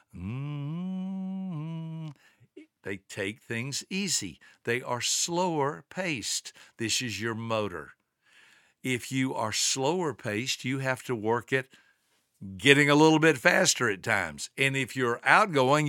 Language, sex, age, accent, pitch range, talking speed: English, male, 60-79, American, 110-140 Hz, 130 wpm